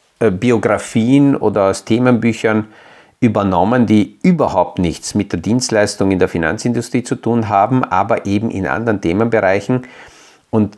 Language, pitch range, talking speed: German, 100-120 Hz, 130 wpm